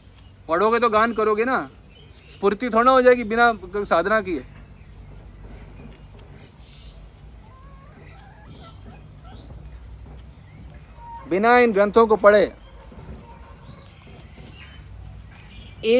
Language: Hindi